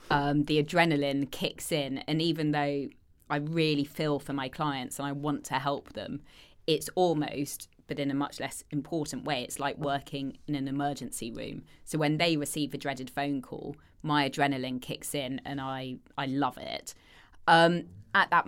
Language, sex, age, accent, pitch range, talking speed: English, female, 20-39, British, 135-150 Hz, 180 wpm